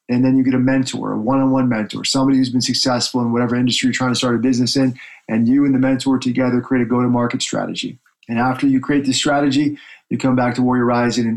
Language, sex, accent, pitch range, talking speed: English, male, American, 115-130 Hz, 235 wpm